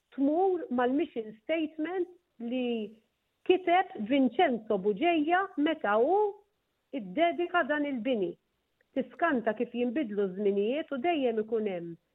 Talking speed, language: 95 wpm, English